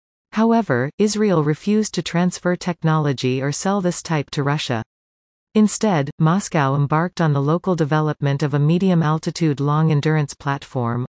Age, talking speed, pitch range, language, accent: 40-59, 130 wpm, 140-180 Hz, Hebrew, American